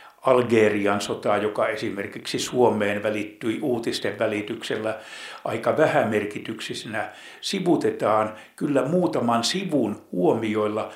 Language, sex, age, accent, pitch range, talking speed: Finnish, male, 60-79, native, 105-135 Hz, 80 wpm